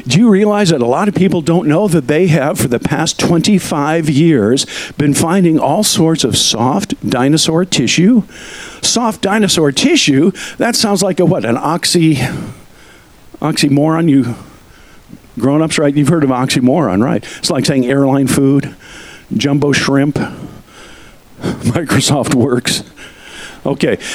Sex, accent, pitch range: male, American, 145-190 Hz